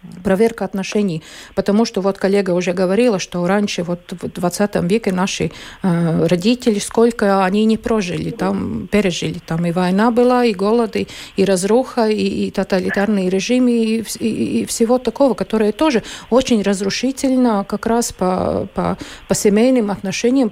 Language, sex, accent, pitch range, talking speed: Russian, female, native, 195-240 Hz, 150 wpm